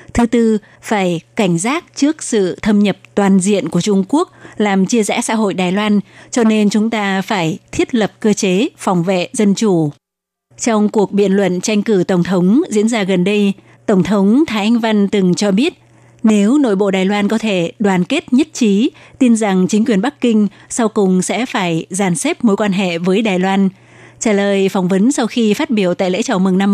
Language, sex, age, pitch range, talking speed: Vietnamese, female, 20-39, 190-225 Hz, 215 wpm